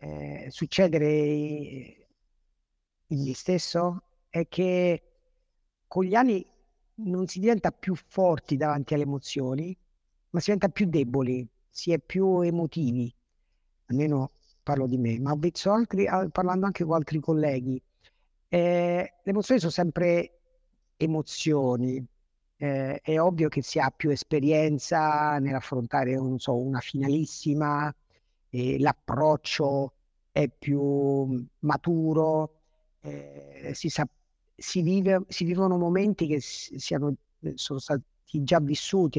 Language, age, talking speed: Italian, 50-69, 120 wpm